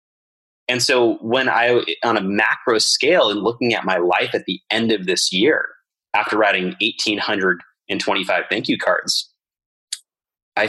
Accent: American